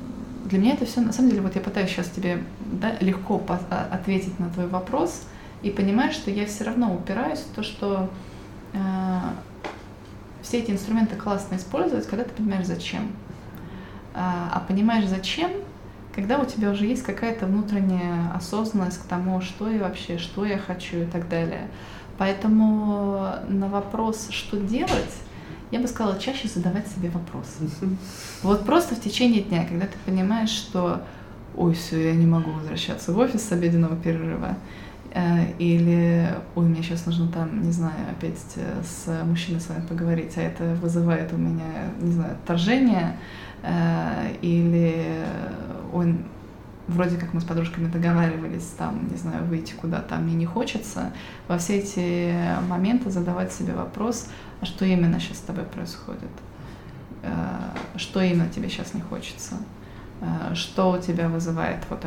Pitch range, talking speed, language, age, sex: 170-205 Hz, 155 wpm, Russian, 20-39, female